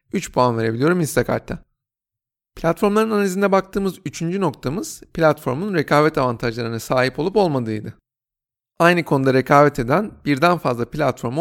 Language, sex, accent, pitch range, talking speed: Turkish, male, native, 130-175 Hz, 115 wpm